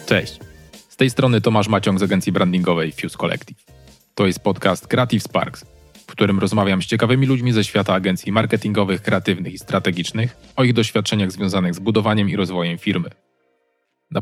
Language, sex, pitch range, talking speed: Polish, male, 90-110 Hz, 165 wpm